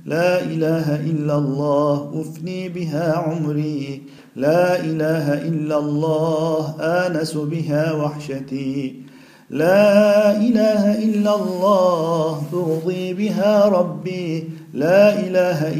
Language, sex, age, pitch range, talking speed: Turkish, male, 50-69, 150-180 Hz, 85 wpm